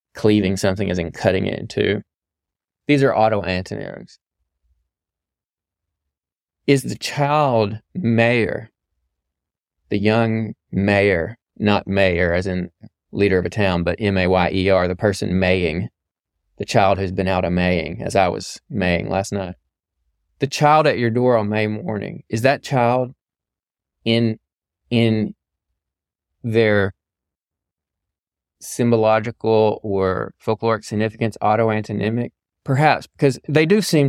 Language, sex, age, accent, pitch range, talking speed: English, male, 20-39, American, 95-120 Hz, 125 wpm